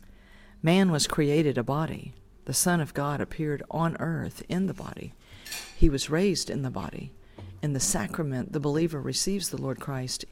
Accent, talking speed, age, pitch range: American, 175 wpm, 50-69, 130-170 Hz